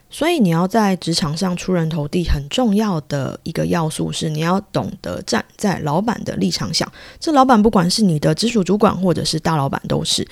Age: 20-39